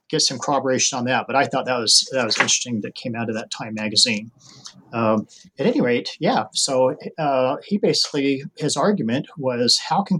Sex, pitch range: male, 115-145 Hz